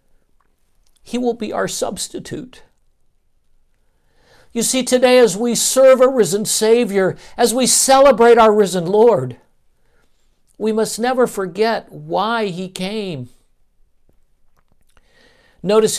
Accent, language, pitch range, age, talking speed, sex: American, English, 125-210 Hz, 60-79, 105 wpm, male